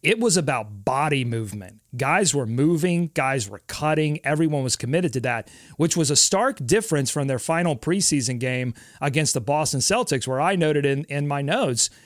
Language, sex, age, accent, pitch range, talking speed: English, male, 30-49, American, 135-160 Hz, 185 wpm